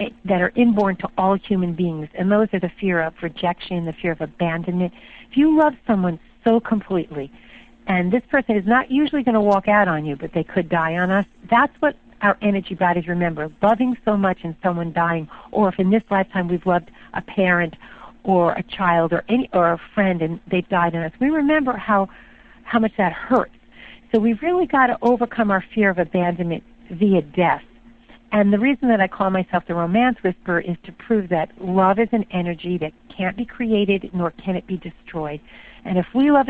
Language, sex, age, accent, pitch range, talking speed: English, female, 50-69, American, 175-225 Hz, 205 wpm